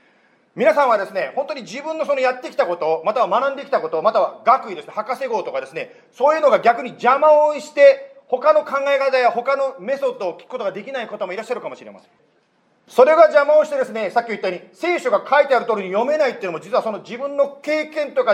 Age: 40-59